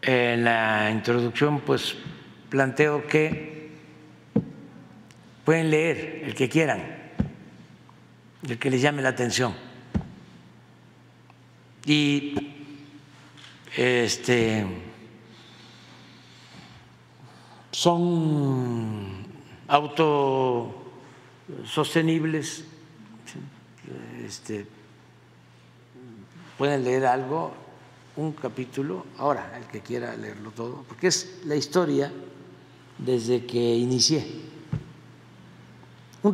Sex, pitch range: male, 115-145 Hz